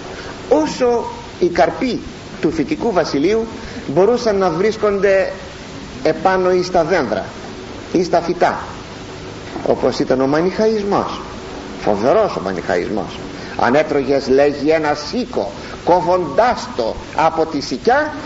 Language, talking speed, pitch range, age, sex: Greek, 110 wpm, 155-235 Hz, 50-69, male